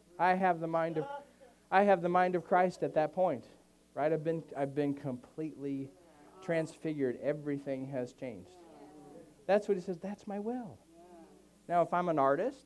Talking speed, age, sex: 145 wpm, 40-59, male